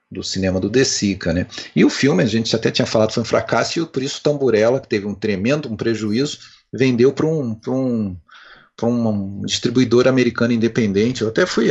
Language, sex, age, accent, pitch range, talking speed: Portuguese, male, 40-59, Brazilian, 100-125 Hz, 205 wpm